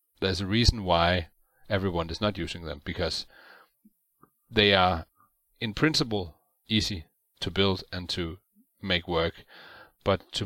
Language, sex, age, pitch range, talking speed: English, male, 30-49, 90-115 Hz, 130 wpm